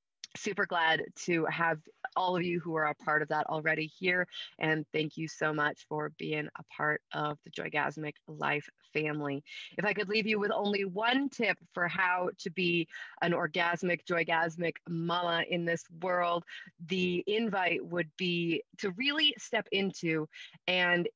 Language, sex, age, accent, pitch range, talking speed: English, female, 30-49, American, 155-185 Hz, 165 wpm